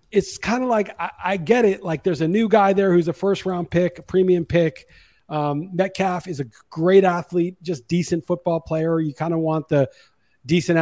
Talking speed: 210 wpm